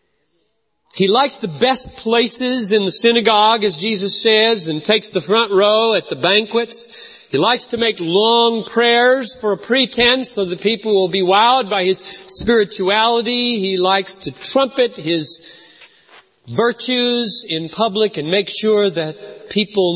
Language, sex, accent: English, male, American